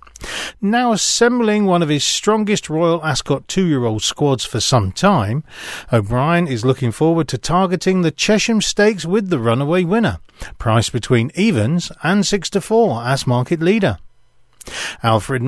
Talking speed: 145 wpm